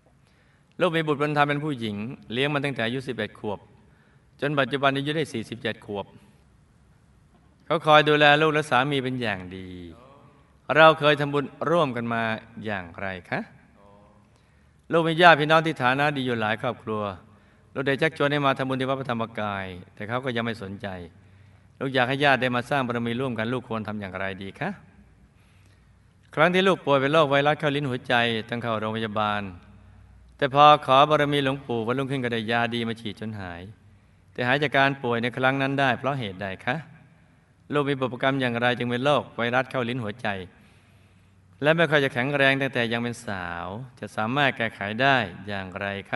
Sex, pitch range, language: male, 105-140 Hz, Thai